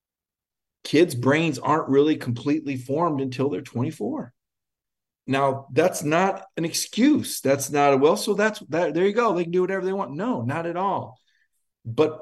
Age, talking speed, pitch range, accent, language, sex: 50-69, 170 wpm, 125-170 Hz, American, English, male